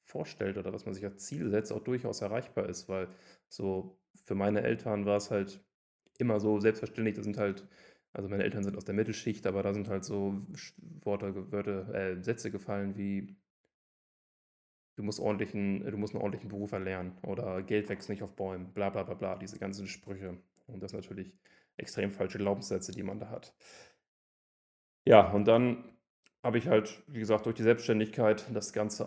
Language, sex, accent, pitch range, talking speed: German, male, German, 100-115 Hz, 185 wpm